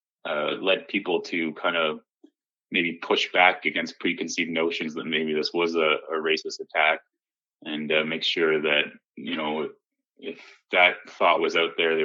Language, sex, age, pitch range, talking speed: English, male, 30-49, 80-95 Hz, 170 wpm